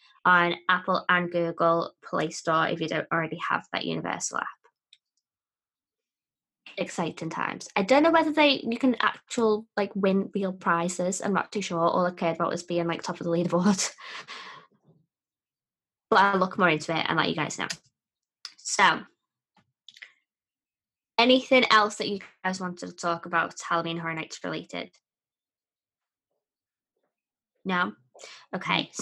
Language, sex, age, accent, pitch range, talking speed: English, female, 20-39, British, 170-200 Hz, 145 wpm